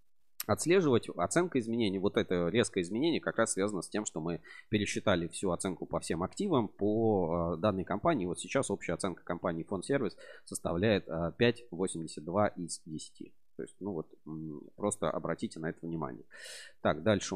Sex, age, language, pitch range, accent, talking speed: male, 30-49, Russian, 90-115 Hz, native, 155 wpm